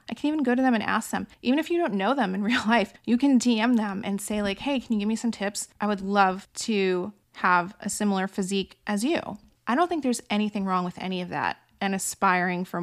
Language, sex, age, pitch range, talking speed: English, female, 20-39, 190-220 Hz, 255 wpm